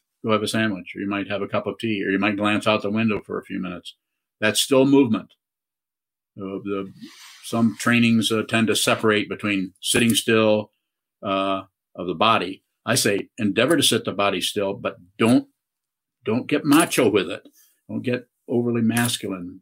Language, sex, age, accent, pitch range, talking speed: English, male, 50-69, American, 100-115 Hz, 180 wpm